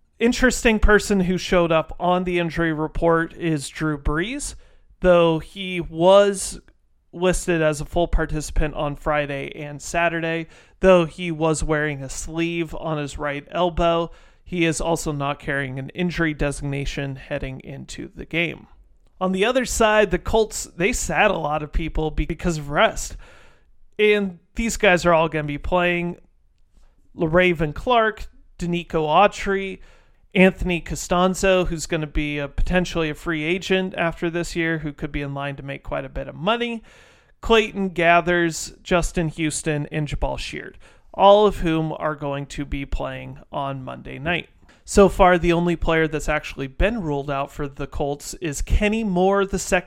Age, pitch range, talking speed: 30-49, 150-180 Hz, 160 wpm